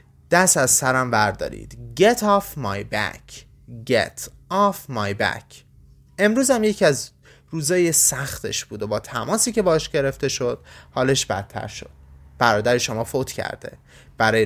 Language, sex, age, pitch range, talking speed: Persian, male, 20-39, 110-150 Hz, 140 wpm